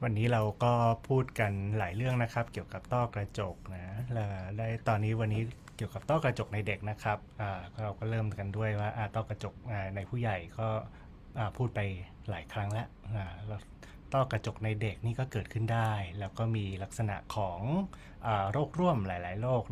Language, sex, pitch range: Thai, male, 95-115 Hz